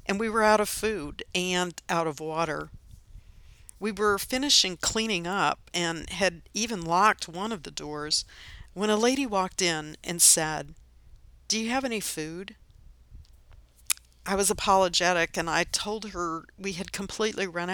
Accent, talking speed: American, 155 wpm